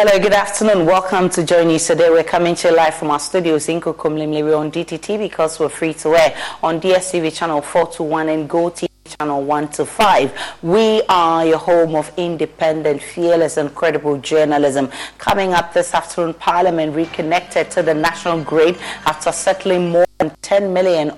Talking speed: 175 wpm